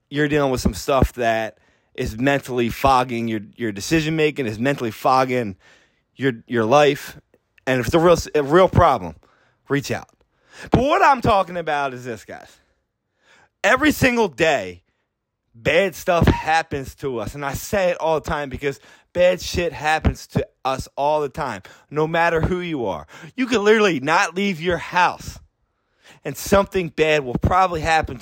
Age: 30-49